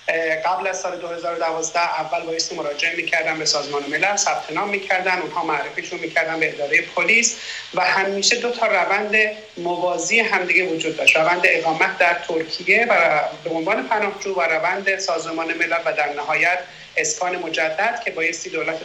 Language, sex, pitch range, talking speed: English, male, 165-215 Hz, 160 wpm